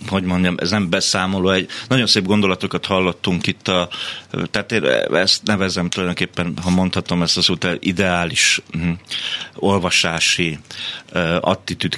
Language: Hungarian